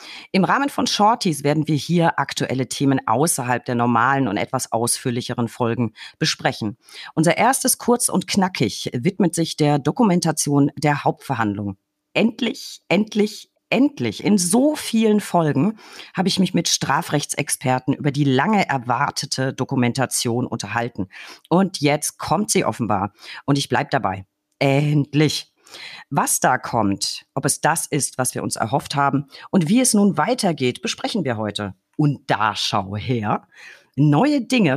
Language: German